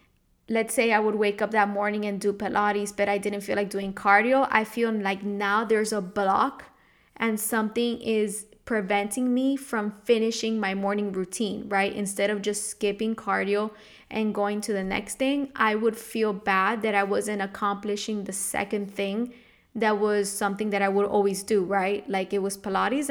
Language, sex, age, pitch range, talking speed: English, female, 20-39, 200-225 Hz, 185 wpm